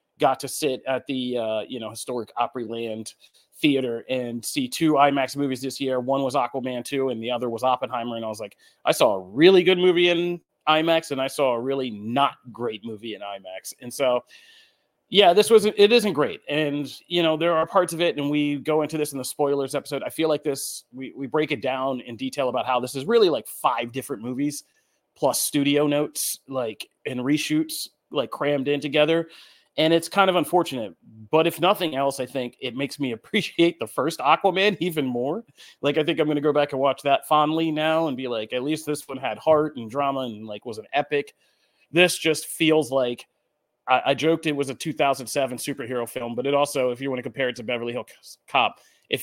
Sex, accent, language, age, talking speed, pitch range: male, American, English, 30-49, 220 wpm, 125-155 Hz